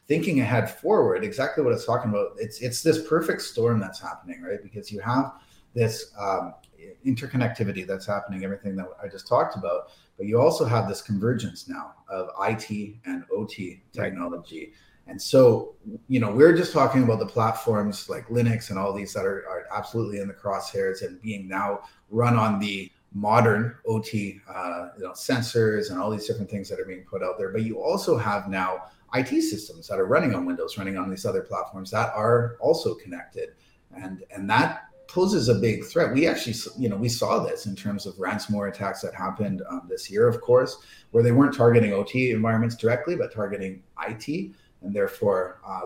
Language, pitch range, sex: English, 100-130 Hz, male